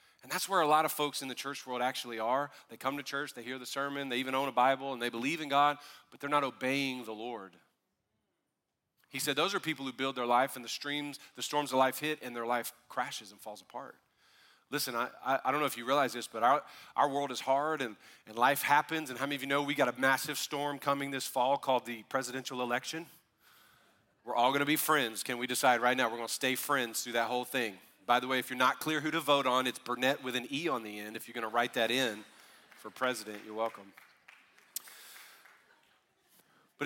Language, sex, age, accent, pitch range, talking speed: English, male, 40-59, American, 120-145 Hz, 240 wpm